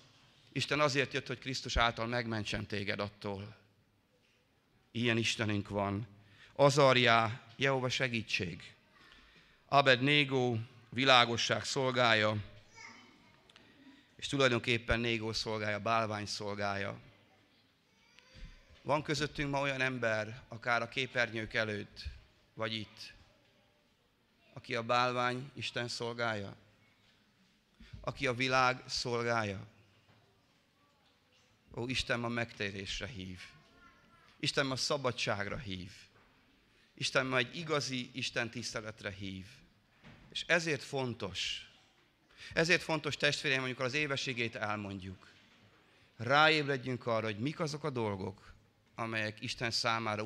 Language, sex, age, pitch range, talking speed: Hungarian, male, 30-49, 105-130 Hz, 95 wpm